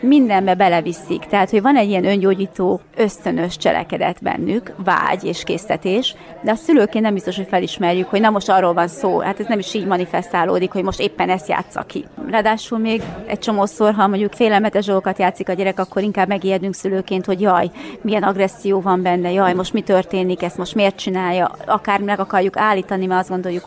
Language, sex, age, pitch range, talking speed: Hungarian, female, 30-49, 185-215 Hz, 190 wpm